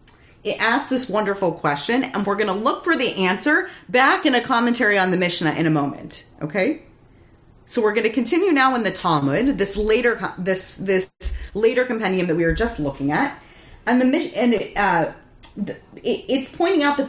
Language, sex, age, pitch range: English, female, 30-49, 175-260 Hz